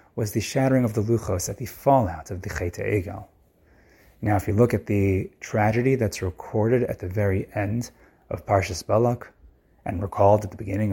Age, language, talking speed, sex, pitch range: 30-49, English, 185 wpm, male, 100-130 Hz